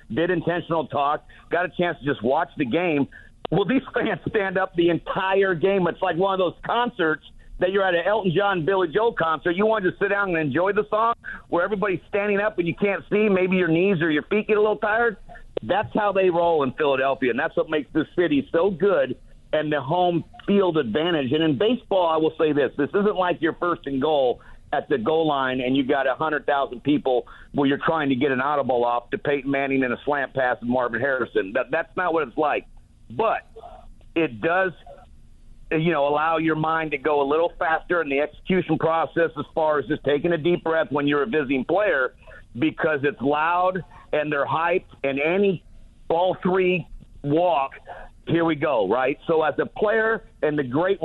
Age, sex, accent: 50-69, male, American